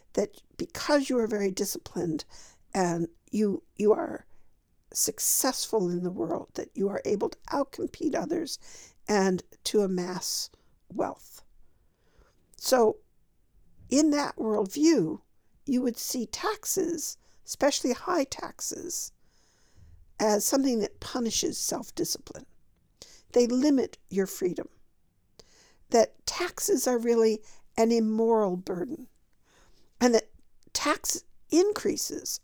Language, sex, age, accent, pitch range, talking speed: English, female, 60-79, American, 210-315 Hz, 105 wpm